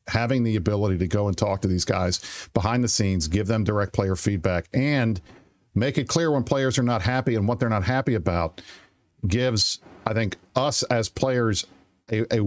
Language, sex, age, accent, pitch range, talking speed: English, male, 50-69, American, 100-125 Hz, 195 wpm